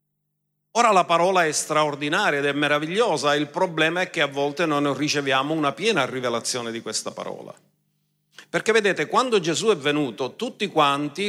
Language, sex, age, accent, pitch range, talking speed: Italian, male, 50-69, native, 155-215 Hz, 160 wpm